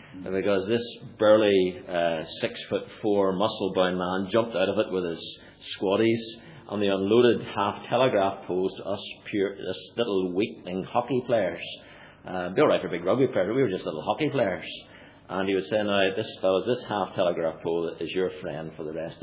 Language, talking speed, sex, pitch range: English, 195 wpm, male, 85-110 Hz